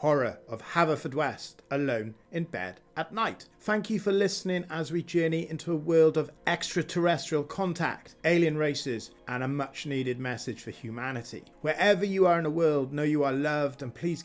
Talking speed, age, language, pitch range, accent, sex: 180 wpm, 40-59, English, 140-185 Hz, British, male